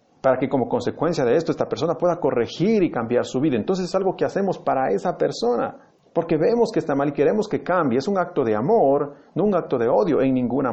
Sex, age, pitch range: male, 40-59, 120-180 Hz